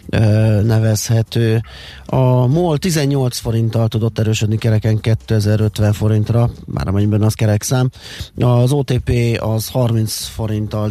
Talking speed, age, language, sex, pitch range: 110 wpm, 30-49, Hungarian, male, 105-120 Hz